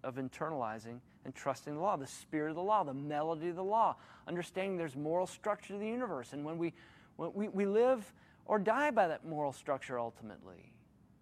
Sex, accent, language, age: male, American, English, 40-59